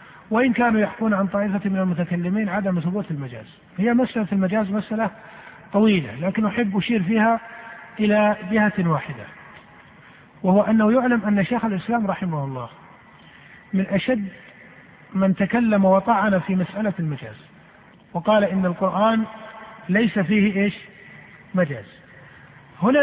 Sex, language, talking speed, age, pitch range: male, Arabic, 120 wpm, 50-69, 185-215 Hz